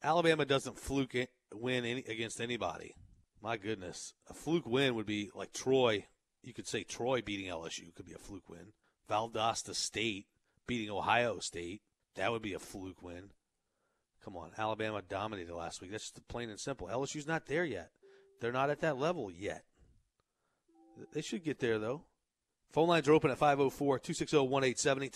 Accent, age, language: American, 30-49, English